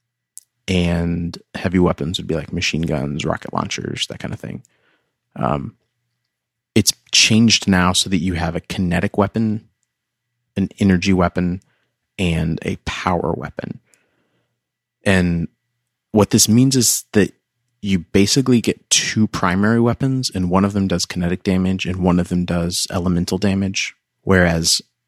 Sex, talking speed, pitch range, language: male, 140 wpm, 85-110 Hz, English